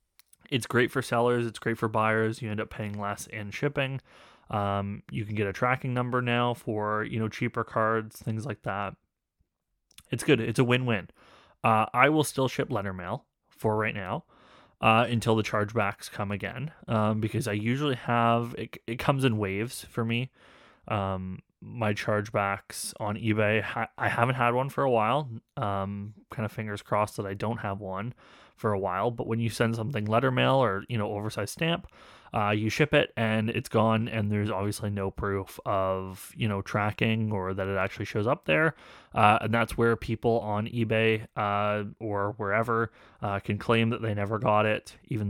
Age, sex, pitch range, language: 20-39, male, 100-115 Hz, English